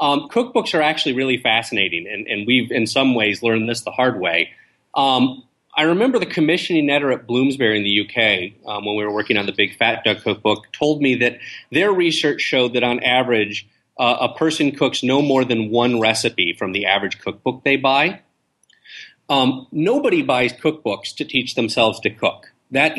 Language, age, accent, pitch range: English, 30-49, American, 110-145 Hz